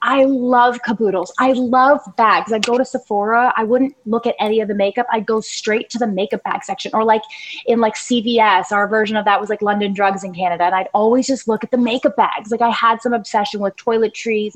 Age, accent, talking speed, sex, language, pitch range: 20-39, American, 235 wpm, female, English, 195-240 Hz